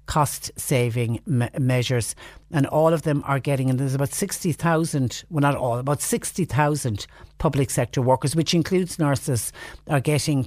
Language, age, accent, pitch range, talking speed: English, 60-79, Irish, 120-150 Hz, 145 wpm